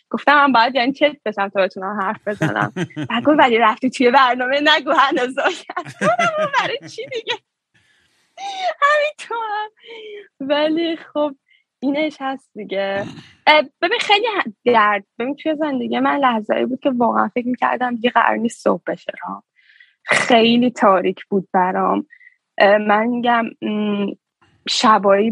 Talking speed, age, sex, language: 115 wpm, 10-29, female, Persian